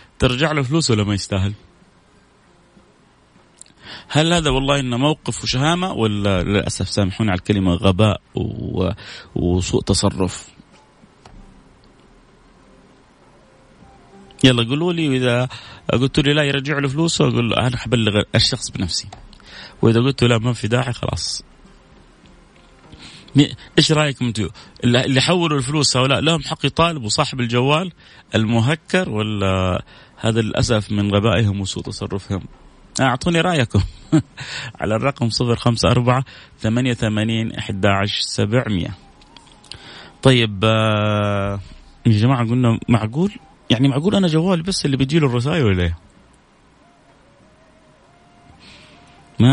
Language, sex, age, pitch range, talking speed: Arabic, male, 30-49, 105-140 Hz, 110 wpm